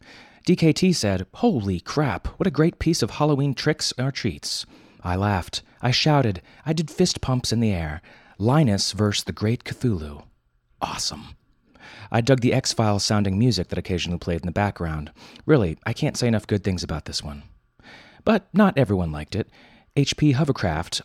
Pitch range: 90-140 Hz